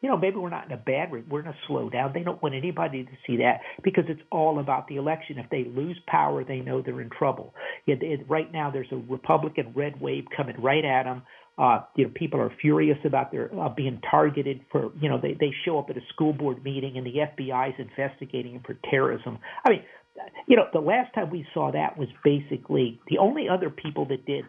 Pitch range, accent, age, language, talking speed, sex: 135-180 Hz, American, 50-69, English, 240 wpm, male